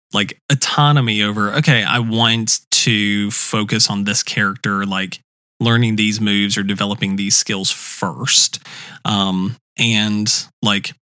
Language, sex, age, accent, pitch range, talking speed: English, male, 20-39, American, 105-140 Hz, 125 wpm